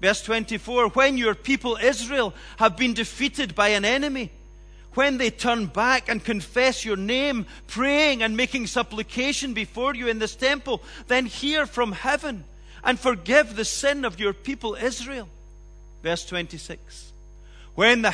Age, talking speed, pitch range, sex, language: 40-59, 150 wpm, 215-265 Hz, male, English